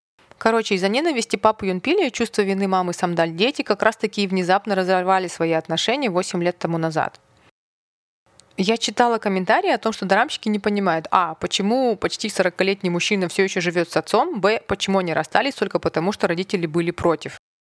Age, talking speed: 30-49, 175 wpm